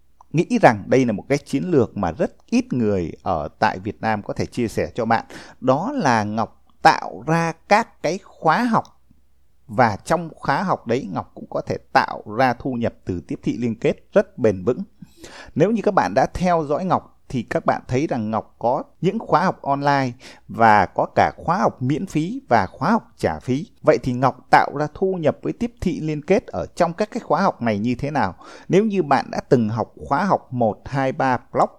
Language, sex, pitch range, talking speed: Vietnamese, male, 120-185 Hz, 220 wpm